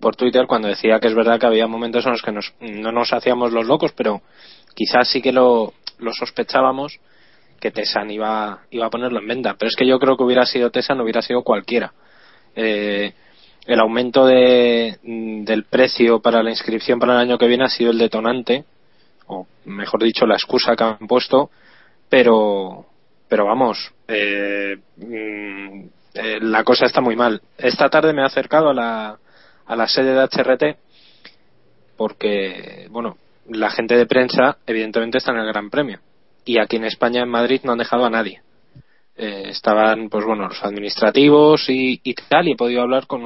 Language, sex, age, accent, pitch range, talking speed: Spanish, male, 20-39, Spanish, 110-125 Hz, 180 wpm